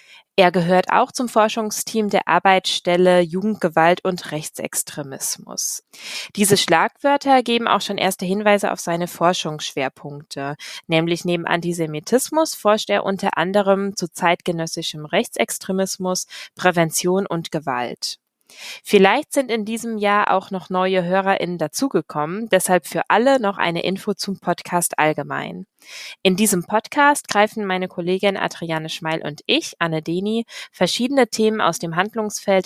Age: 20-39